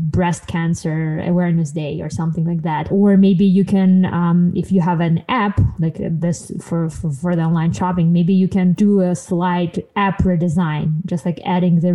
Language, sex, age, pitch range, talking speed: English, female, 20-39, 170-195 Hz, 190 wpm